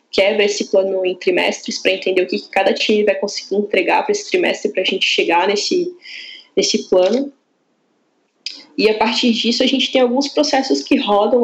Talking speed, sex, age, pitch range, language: 185 wpm, female, 10-29, 195-275 Hz, Portuguese